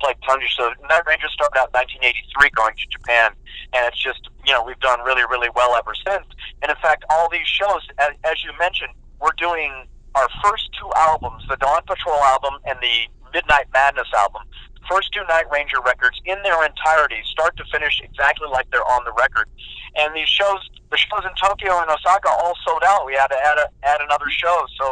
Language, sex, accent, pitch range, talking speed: English, male, American, 130-175 Hz, 210 wpm